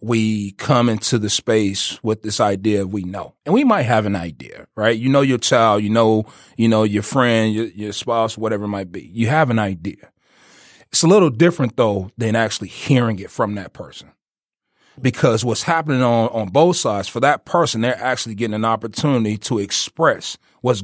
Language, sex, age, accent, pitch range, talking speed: English, male, 30-49, American, 110-135 Hz, 195 wpm